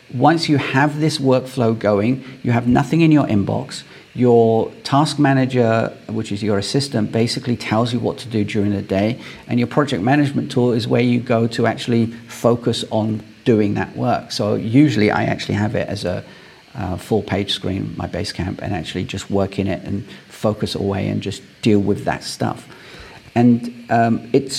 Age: 40-59